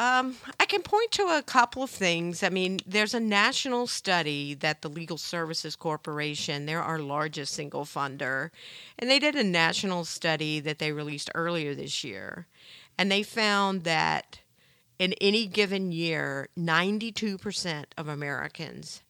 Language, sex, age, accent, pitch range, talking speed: English, female, 50-69, American, 150-195 Hz, 150 wpm